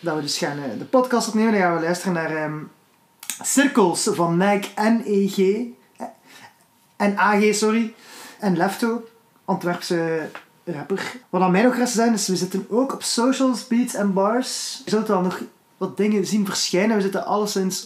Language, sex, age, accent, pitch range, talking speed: Dutch, male, 20-39, Dutch, 180-210 Hz, 170 wpm